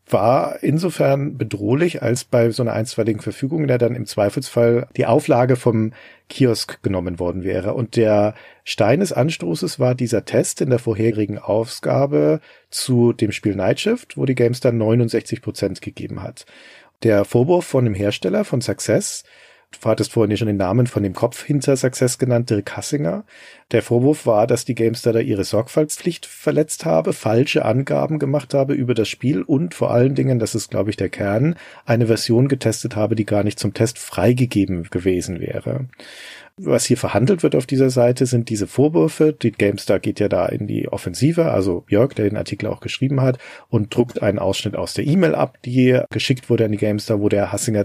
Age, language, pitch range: 40-59, German, 105-130 Hz